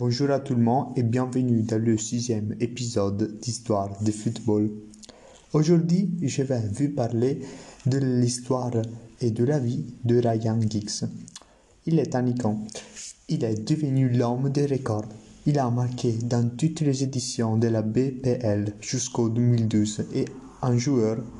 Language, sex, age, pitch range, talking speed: French, male, 30-49, 110-125 Hz, 150 wpm